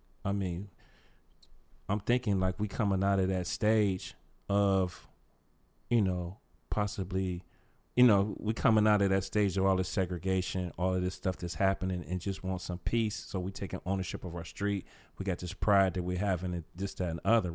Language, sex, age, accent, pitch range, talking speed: English, male, 30-49, American, 90-100 Hz, 200 wpm